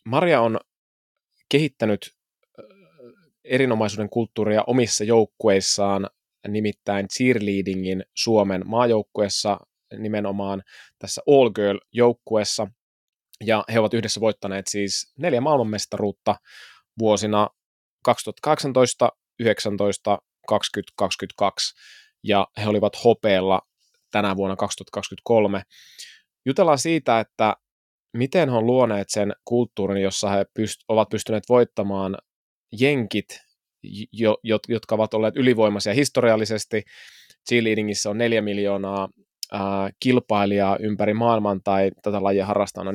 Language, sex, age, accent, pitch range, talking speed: Finnish, male, 20-39, native, 100-115 Hz, 95 wpm